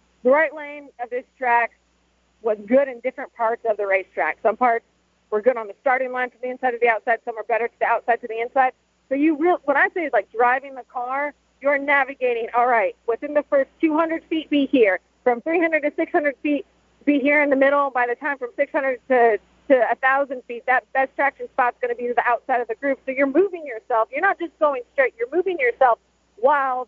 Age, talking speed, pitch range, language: 40-59, 235 wpm, 235-295 Hz, English